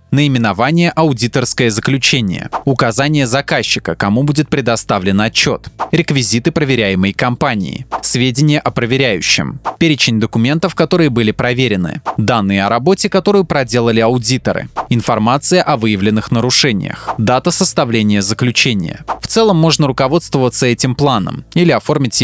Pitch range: 115-160 Hz